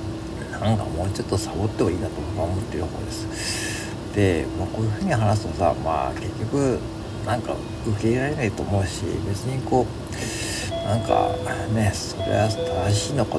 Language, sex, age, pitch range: Japanese, male, 50-69, 100-110 Hz